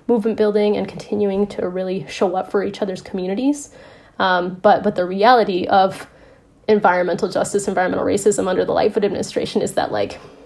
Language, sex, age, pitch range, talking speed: English, female, 20-39, 185-215 Hz, 165 wpm